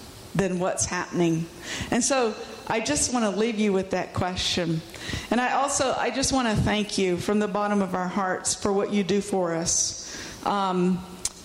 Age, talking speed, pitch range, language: 50-69, 190 wpm, 195-240 Hz, English